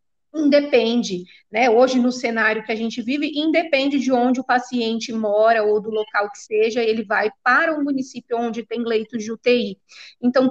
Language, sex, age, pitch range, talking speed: Portuguese, female, 30-49, 225-280 Hz, 175 wpm